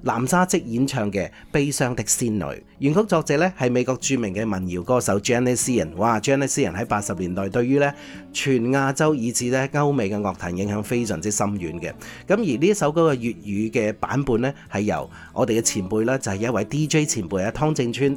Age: 30-49